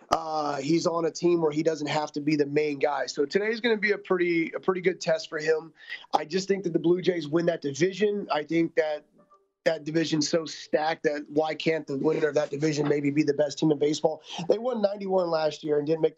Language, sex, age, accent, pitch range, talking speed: English, male, 30-49, American, 150-185 Hz, 245 wpm